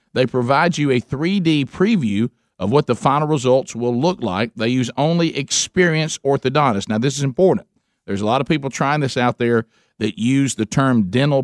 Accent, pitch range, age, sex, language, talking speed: American, 115-140 Hz, 50-69, male, English, 195 wpm